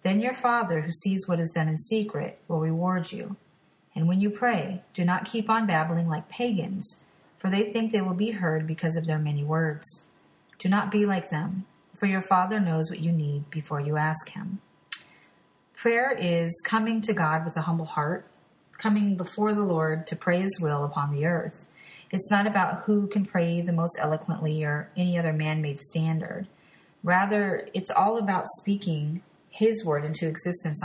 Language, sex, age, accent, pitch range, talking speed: English, female, 30-49, American, 160-185 Hz, 185 wpm